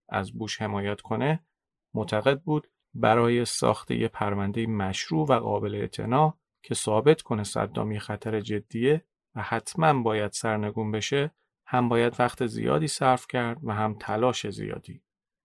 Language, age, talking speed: Persian, 40-59, 135 wpm